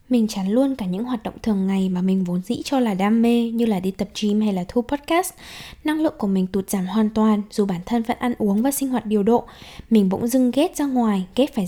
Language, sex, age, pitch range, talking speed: Vietnamese, female, 10-29, 200-255 Hz, 270 wpm